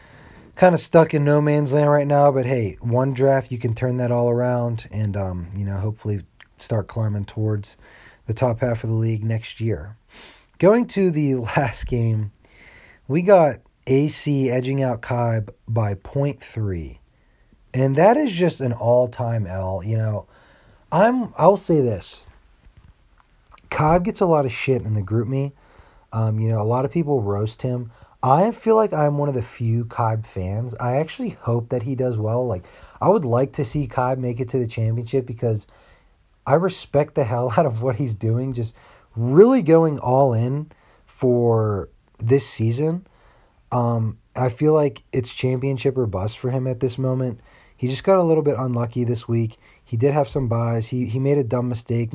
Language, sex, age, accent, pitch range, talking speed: English, male, 30-49, American, 110-140 Hz, 185 wpm